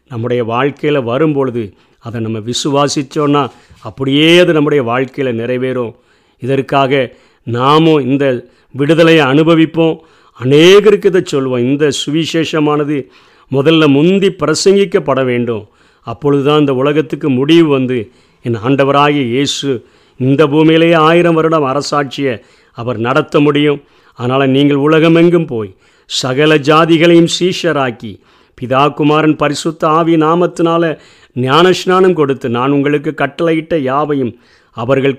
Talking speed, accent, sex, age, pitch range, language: 100 wpm, native, male, 50-69, 130-155 Hz, Tamil